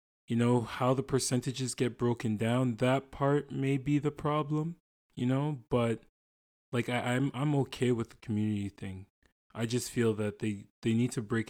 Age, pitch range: 20-39, 100-125 Hz